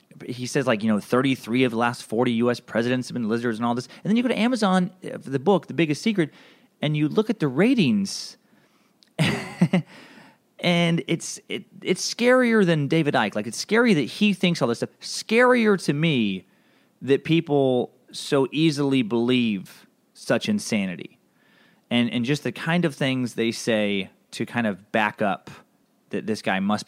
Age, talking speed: 30-49, 180 wpm